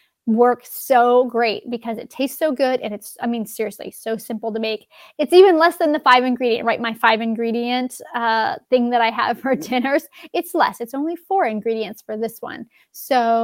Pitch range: 230-290 Hz